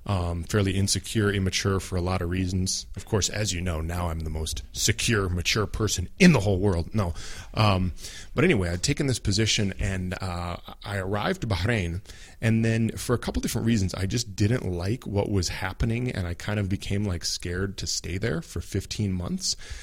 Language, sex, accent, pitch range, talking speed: English, male, American, 90-105 Hz, 200 wpm